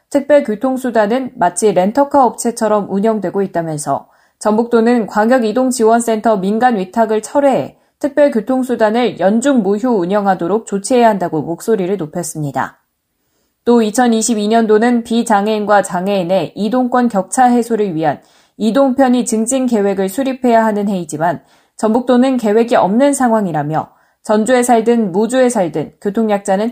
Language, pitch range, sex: Korean, 195-250 Hz, female